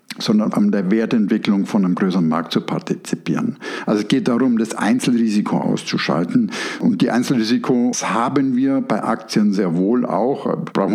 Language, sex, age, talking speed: German, male, 60-79, 155 wpm